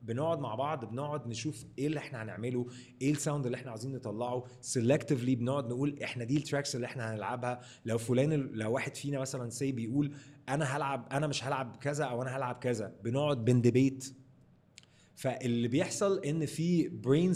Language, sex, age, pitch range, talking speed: Arabic, male, 20-39, 125-150 Hz, 170 wpm